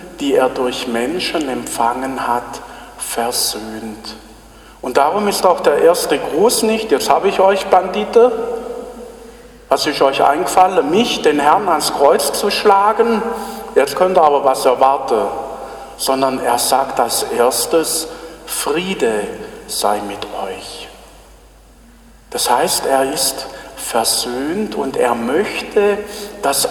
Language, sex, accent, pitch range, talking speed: German, male, German, 130-195 Hz, 125 wpm